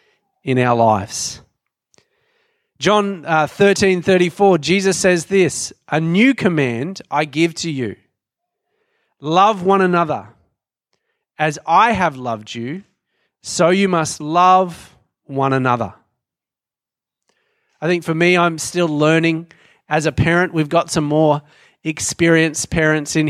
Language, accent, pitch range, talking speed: English, Australian, 135-180 Hz, 120 wpm